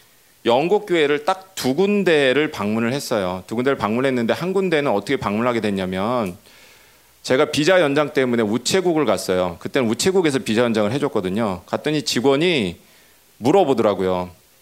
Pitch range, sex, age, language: 105-175 Hz, male, 40-59, Korean